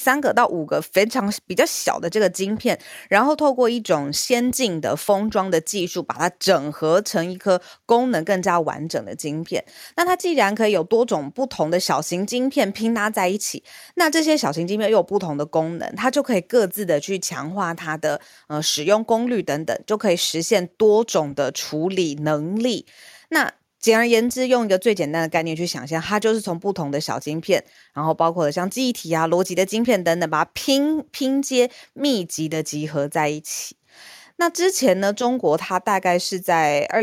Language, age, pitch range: Chinese, 20-39, 165-230 Hz